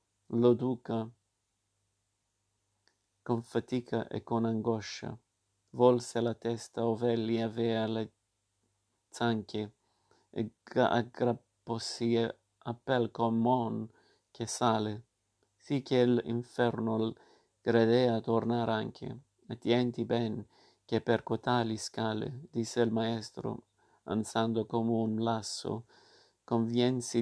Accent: native